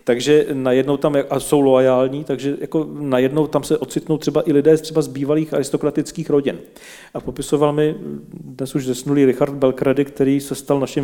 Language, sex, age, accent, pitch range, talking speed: Czech, male, 40-59, native, 125-145 Hz, 180 wpm